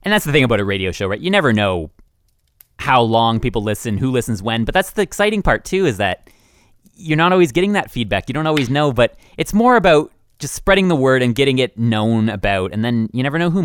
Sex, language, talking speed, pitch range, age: male, English, 245 wpm, 95-130 Hz, 30-49